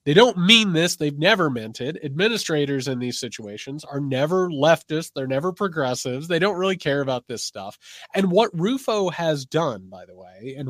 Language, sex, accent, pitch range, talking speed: English, male, American, 130-200 Hz, 190 wpm